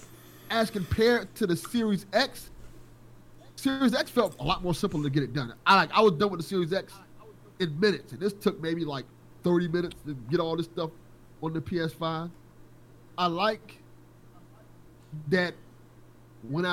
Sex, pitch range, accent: male, 135-190 Hz, American